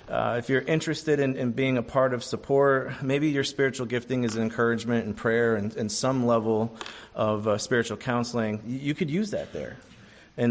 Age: 30-49